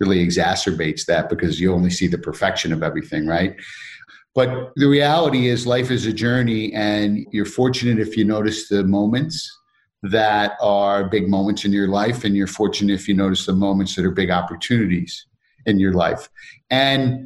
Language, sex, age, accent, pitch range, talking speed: English, male, 50-69, American, 100-120 Hz, 175 wpm